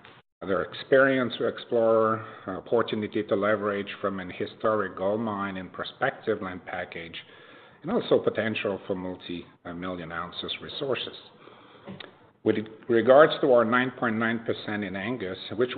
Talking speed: 120 wpm